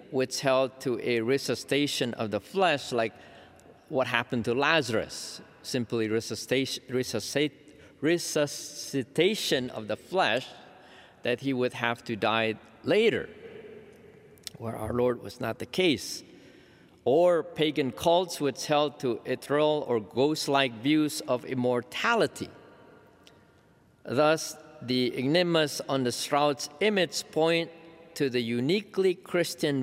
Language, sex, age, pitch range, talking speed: English, male, 50-69, 125-155 Hz, 115 wpm